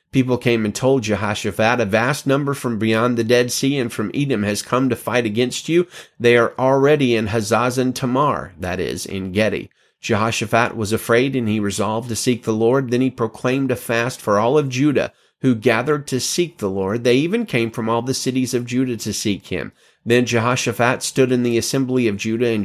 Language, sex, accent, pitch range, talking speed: English, male, American, 110-130 Hz, 205 wpm